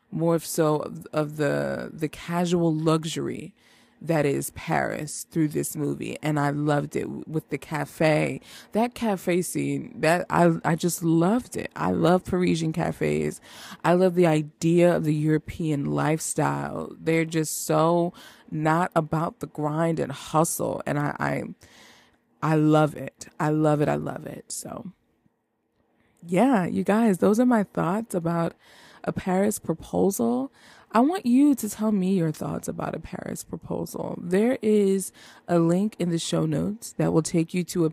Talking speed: 160 wpm